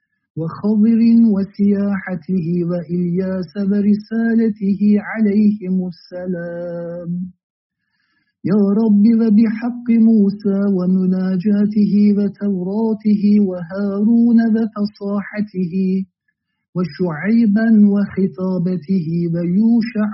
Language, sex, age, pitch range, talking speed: Turkish, male, 50-69, 185-210 Hz, 50 wpm